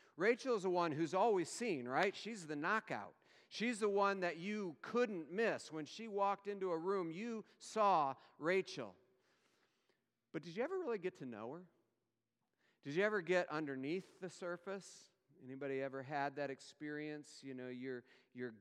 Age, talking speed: 40-59, 165 wpm